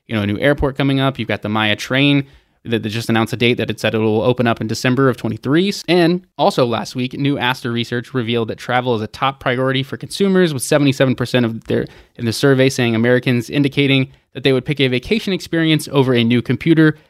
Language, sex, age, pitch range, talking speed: English, male, 20-39, 115-135 Hz, 230 wpm